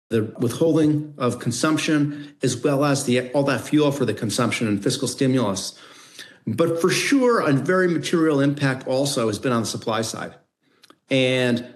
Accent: American